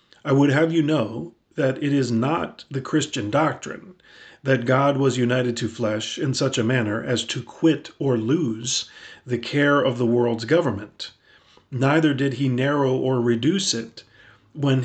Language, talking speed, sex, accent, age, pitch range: English, 165 wpm, male, American, 40-59, 115-140 Hz